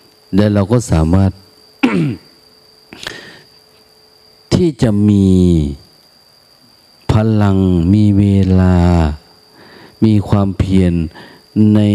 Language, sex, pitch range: Thai, male, 85-110 Hz